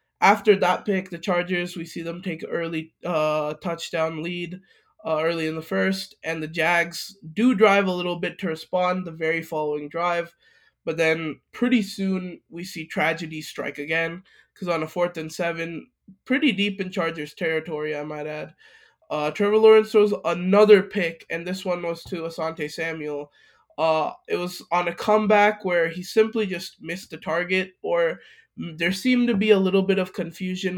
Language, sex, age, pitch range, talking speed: English, male, 20-39, 160-190 Hz, 175 wpm